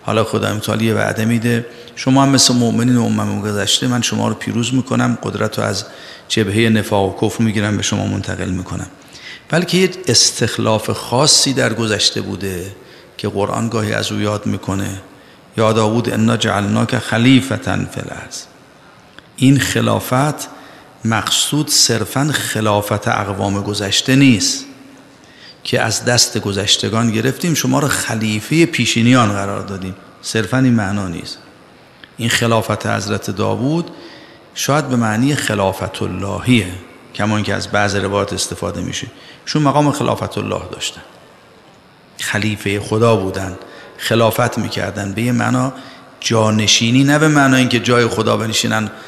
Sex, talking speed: male, 130 wpm